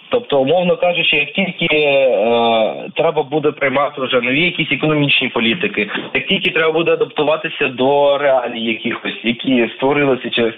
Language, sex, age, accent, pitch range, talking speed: Ukrainian, male, 20-39, native, 135-165 Hz, 140 wpm